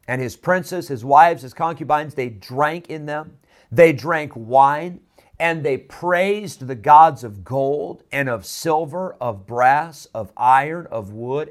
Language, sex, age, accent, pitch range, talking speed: English, male, 40-59, American, 130-175 Hz, 155 wpm